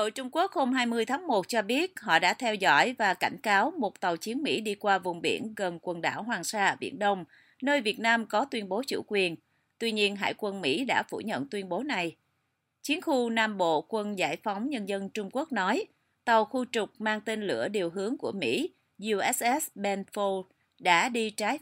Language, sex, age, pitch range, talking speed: Vietnamese, female, 30-49, 180-235 Hz, 215 wpm